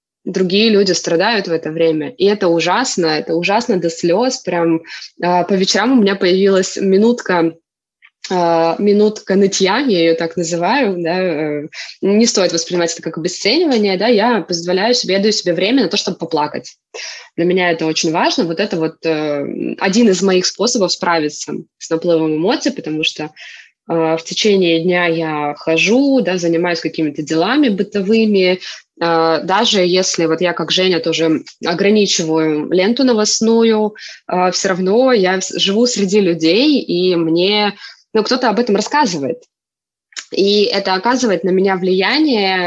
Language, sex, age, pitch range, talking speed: Russian, female, 20-39, 170-210 Hz, 145 wpm